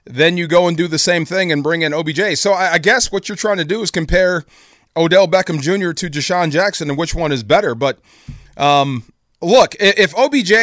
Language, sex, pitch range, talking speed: English, male, 145-185 Hz, 215 wpm